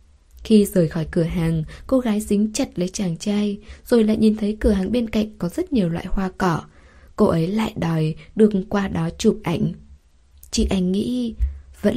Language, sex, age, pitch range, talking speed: Vietnamese, female, 10-29, 165-220 Hz, 195 wpm